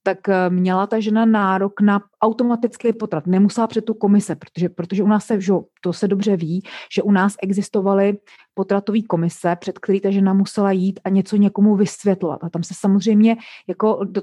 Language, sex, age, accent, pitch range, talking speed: Czech, female, 30-49, native, 185-215 Hz, 175 wpm